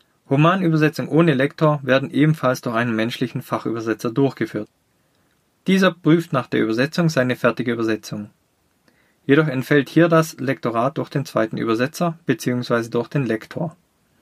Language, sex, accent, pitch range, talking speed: German, male, German, 120-155 Hz, 130 wpm